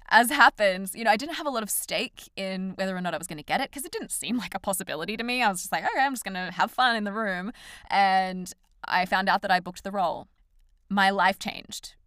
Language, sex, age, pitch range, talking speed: English, female, 20-39, 175-215 Hz, 280 wpm